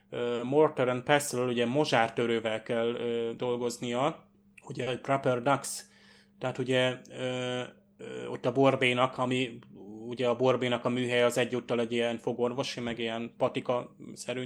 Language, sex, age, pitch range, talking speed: Hungarian, male, 20-39, 120-135 Hz, 135 wpm